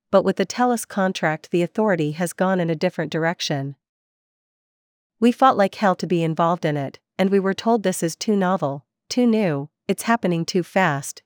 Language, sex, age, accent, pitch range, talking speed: English, female, 40-59, American, 160-195 Hz, 190 wpm